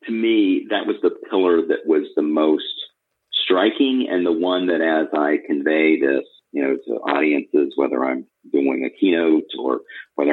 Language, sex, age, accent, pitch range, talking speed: English, male, 50-69, American, 295-360 Hz, 175 wpm